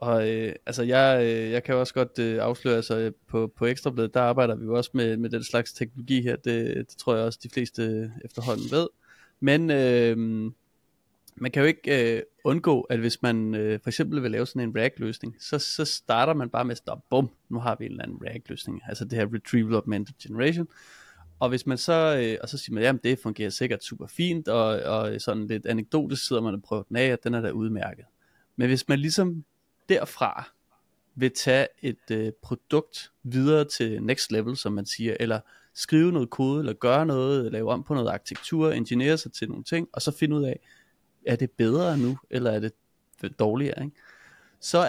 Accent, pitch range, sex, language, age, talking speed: native, 115-145 Hz, male, Danish, 30-49, 210 wpm